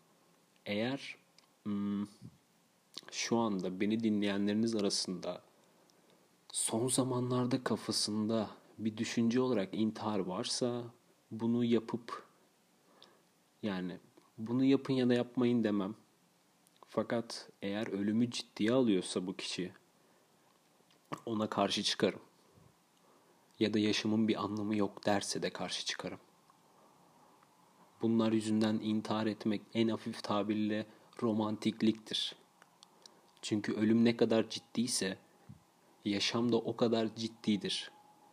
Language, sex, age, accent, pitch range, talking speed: Turkish, male, 40-59, native, 105-125 Hz, 95 wpm